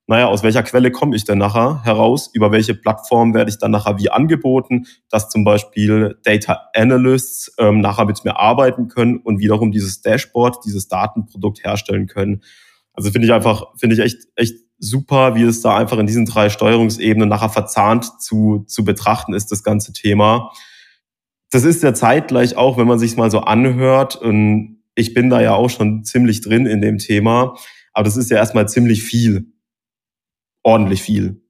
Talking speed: 185 wpm